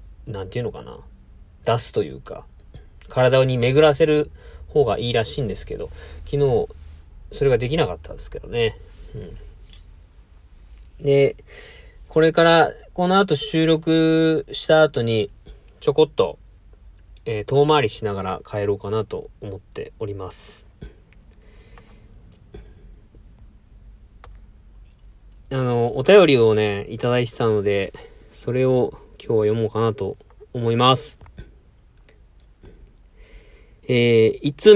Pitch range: 105-155 Hz